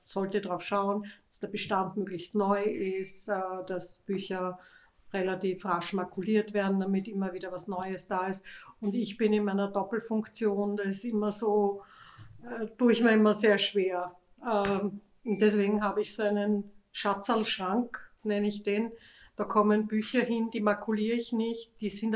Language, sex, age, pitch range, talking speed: German, female, 50-69, 195-215 Hz, 155 wpm